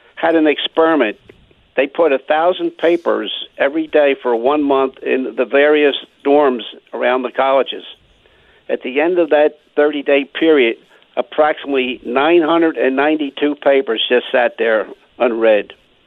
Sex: male